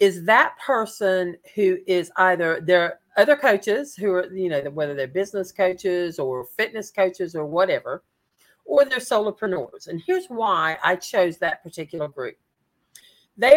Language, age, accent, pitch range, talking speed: English, 50-69, American, 175-225 Hz, 150 wpm